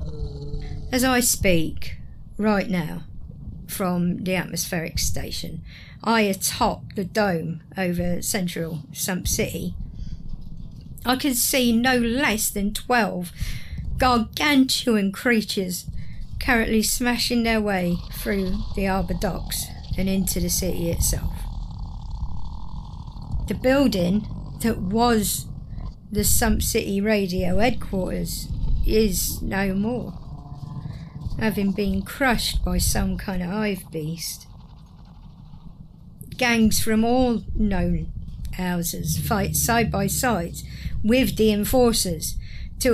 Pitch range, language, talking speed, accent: 170-230 Hz, English, 100 wpm, British